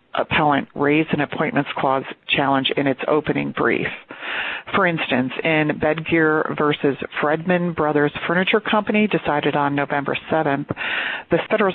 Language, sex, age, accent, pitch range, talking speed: English, female, 40-59, American, 145-165 Hz, 130 wpm